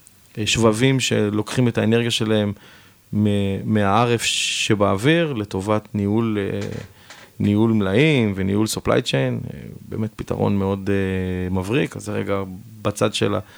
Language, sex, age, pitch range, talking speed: Hebrew, male, 30-49, 100-115 Hz, 100 wpm